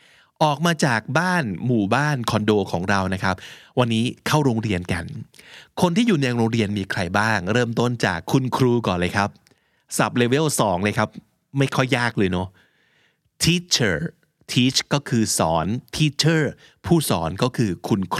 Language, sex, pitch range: Thai, male, 105-155 Hz